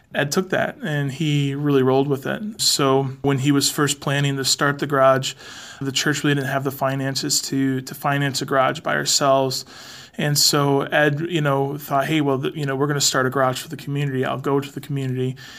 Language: English